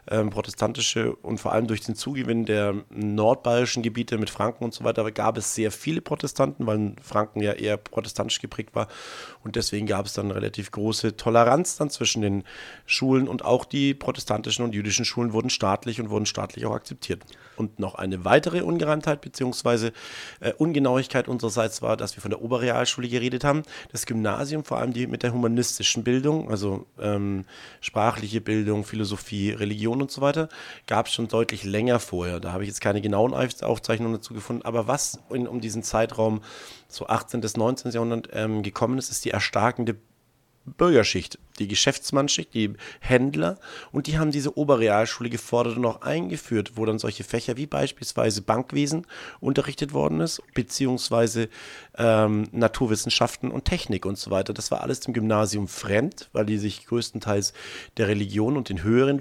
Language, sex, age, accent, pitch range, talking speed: German, male, 30-49, German, 105-125 Hz, 170 wpm